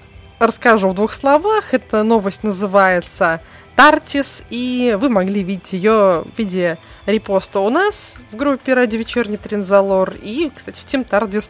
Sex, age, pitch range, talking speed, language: female, 20-39, 185-235 Hz, 145 wpm, Russian